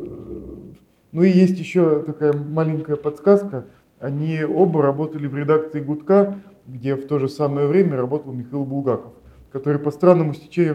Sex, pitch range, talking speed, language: male, 130-180 Hz, 145 wpm, Russian